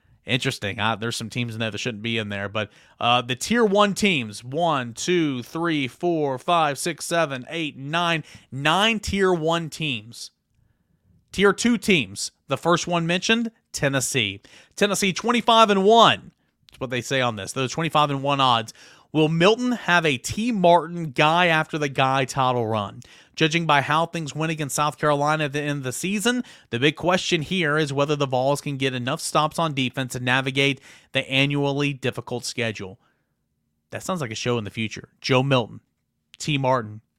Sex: male